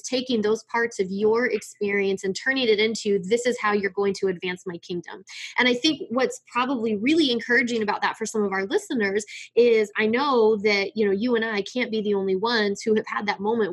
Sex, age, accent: female, 20-39, American